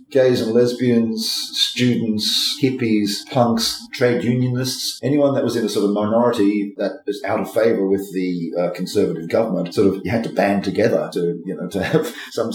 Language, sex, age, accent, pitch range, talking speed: English, male, 40-59, Australian, 100-125 Hz, 185 wpm